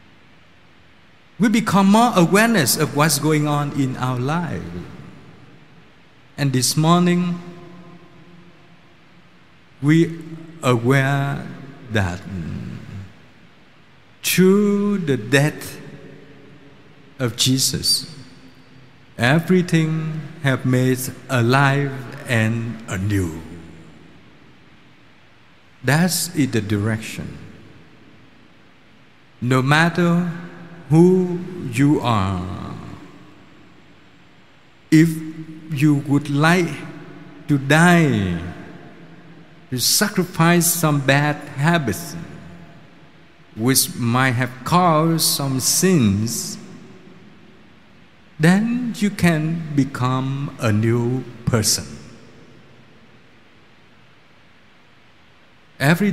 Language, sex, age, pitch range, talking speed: Vietnamese, male, 50-69, 130-170 Hz, 65 wpm